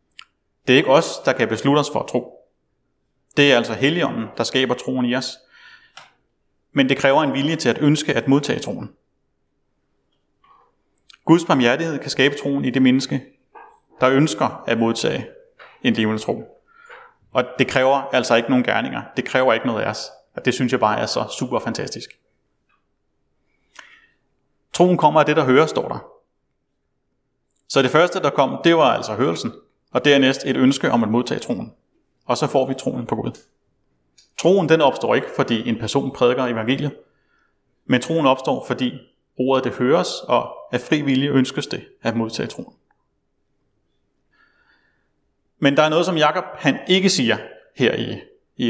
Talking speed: 165 wpm